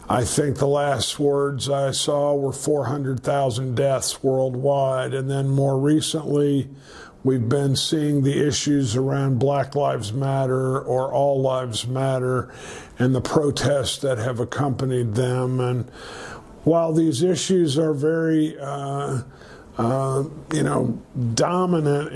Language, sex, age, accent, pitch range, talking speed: English, male, 50-69, American, 130-145 Hz, 125 wpm